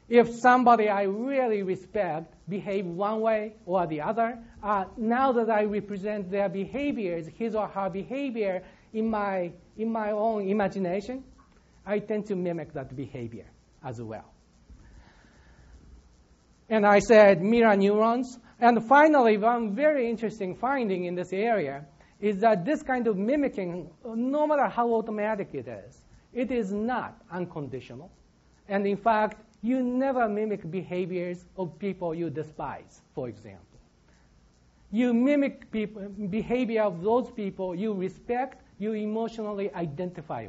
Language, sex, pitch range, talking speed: English, male, 180-230 Hz, 130 wpm